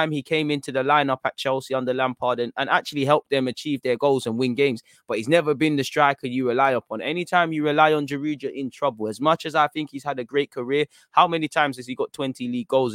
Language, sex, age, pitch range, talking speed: English, male, 20-39, 120-140 Hz, 255 wpm